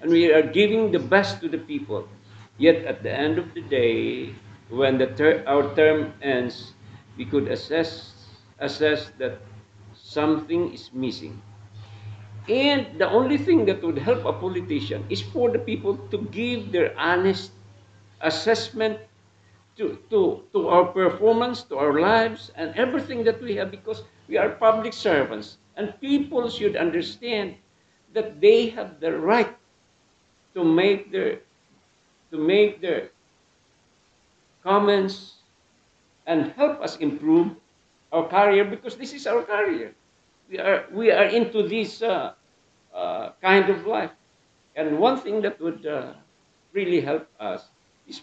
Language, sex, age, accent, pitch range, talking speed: English, male, 50-69, Filipino, 145-240 Hz, 140 wpm